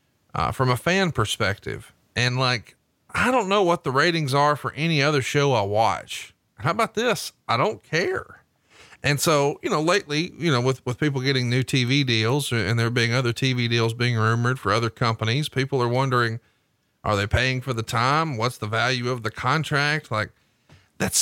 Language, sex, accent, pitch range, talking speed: English, male, American, 110-145 Hz, 190 wpm